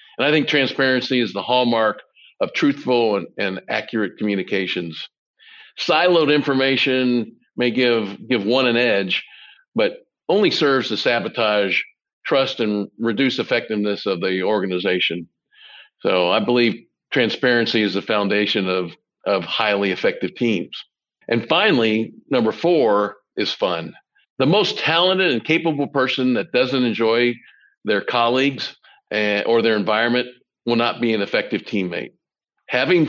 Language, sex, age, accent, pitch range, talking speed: English, male, 50-69, American, 105-125 Hz, 130 wpm